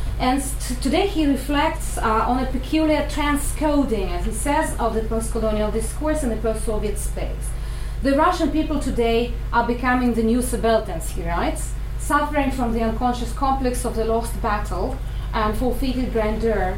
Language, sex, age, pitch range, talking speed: English, female, 30-49, 215-265 Hz, 155 wpm